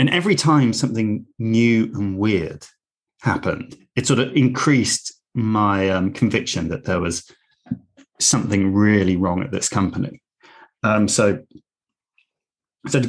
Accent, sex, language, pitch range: British, male, English, 100-130 Hz